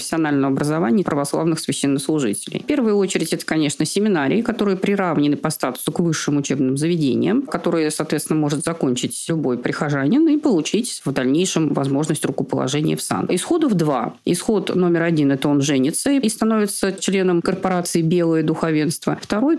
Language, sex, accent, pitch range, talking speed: Russian, female, native, 160-225 Hz, 145 wpm